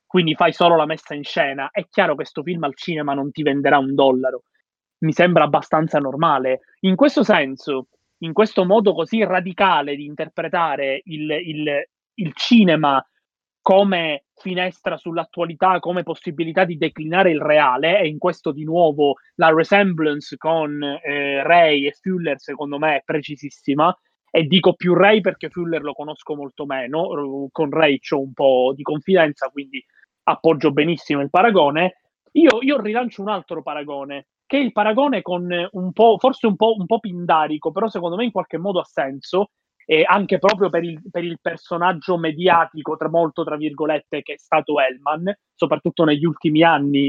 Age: 30-49